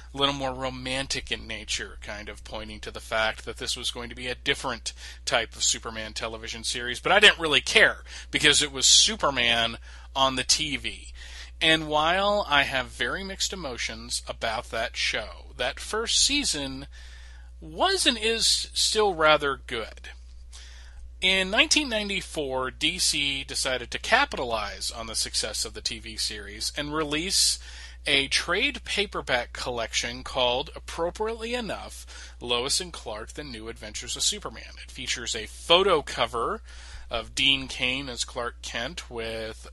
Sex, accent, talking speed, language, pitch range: male, American, 150 wpm, English, 105-155 Hz